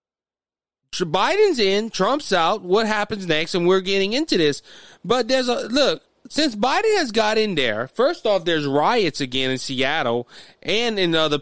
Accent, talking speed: American, 170 wpm